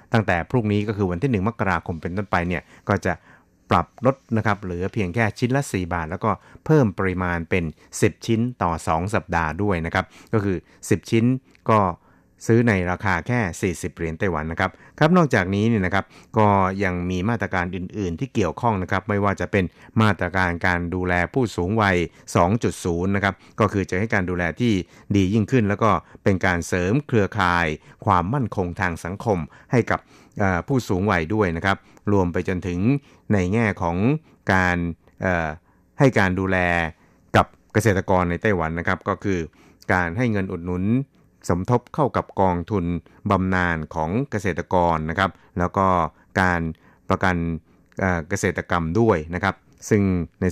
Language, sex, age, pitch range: Thai, male, 60-79, 90-110 Hz